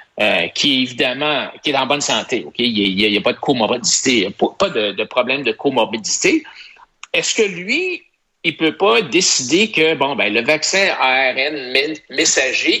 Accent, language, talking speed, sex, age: Canadian, French, 185 wpm, male, 60-79